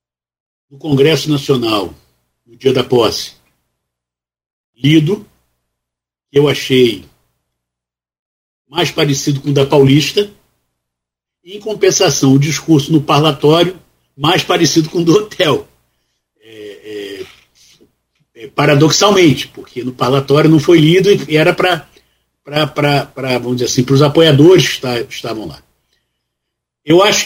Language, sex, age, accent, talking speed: Portuguese, male, 60-79, Brazilian, 110 wpm